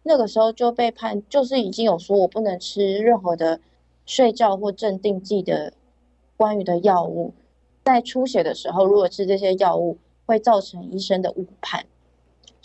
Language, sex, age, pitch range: Chinese, female, 20-39, 180-230 Hz